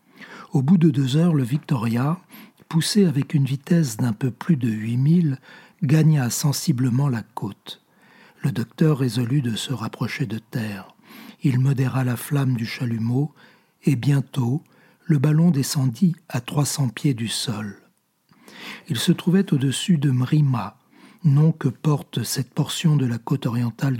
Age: 60-79